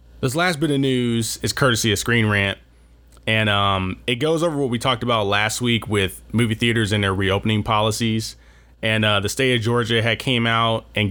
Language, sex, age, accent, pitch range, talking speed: English, male, 20-39, American, 100-120 Hz, 205 wpm